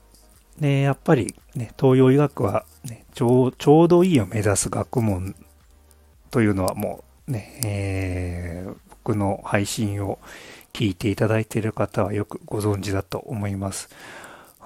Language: Japanese